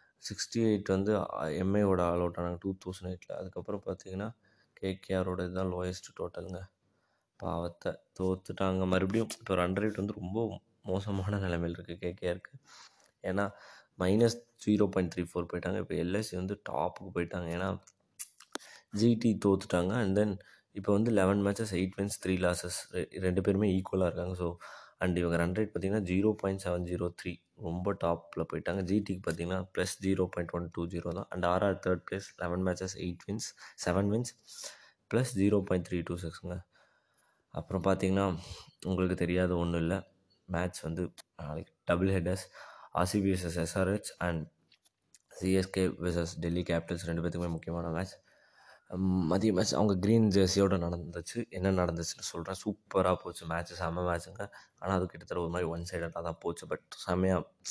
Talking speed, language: 145 wpm, Tamil